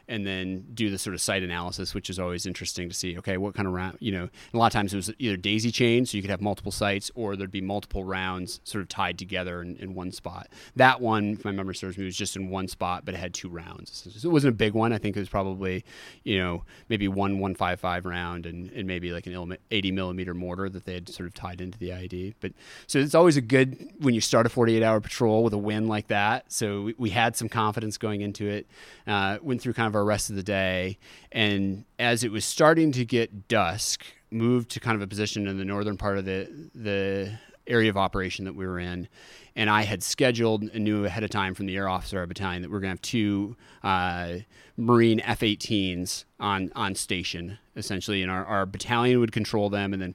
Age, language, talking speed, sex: 30-49, English, 245 wpm, male